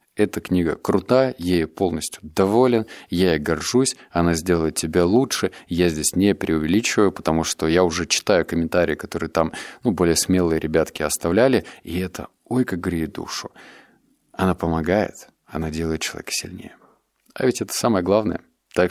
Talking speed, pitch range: 155 wpm, 85-105 Hz